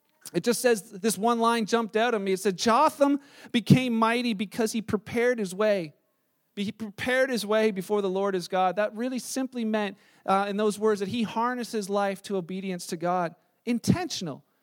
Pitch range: 200-240 Hz